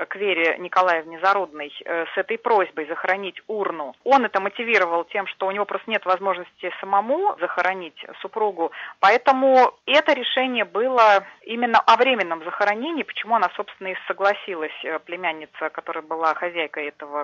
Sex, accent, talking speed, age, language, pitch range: female, native, 140 wpm, 30-49, Russian, 175-225 Hz